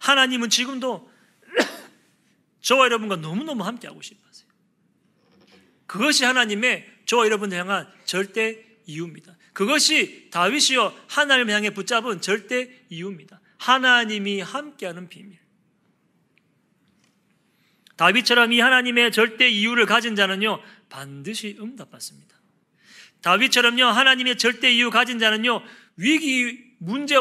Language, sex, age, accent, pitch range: Korean, male, 40-59, native, 195-245 Hz